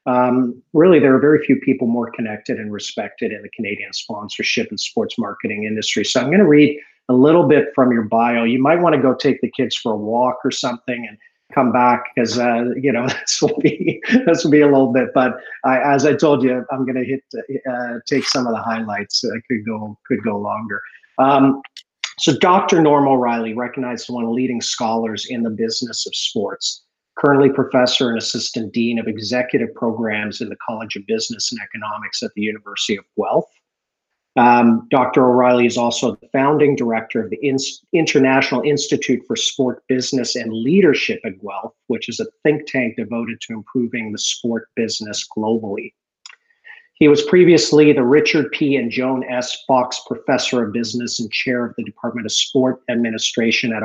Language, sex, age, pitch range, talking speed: English, male, 40-59, 115-140 Hz, 190 wpm